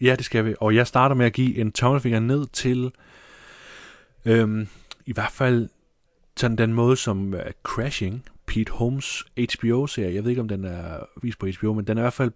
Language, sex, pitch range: Danish, male, 110-130 Hz